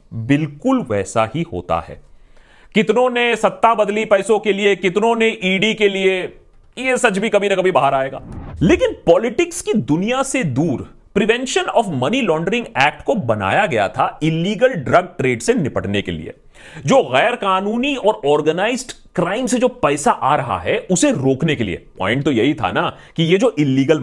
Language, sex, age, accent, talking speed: Hindi, male, 40-59, native, 180 wpm